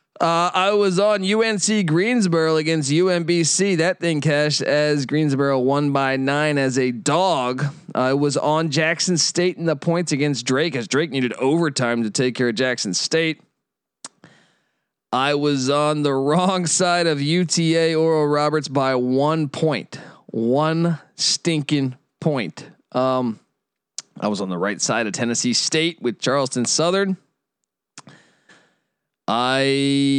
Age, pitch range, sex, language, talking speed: 20-39, 125-165 Hz, male, English, 140 wpm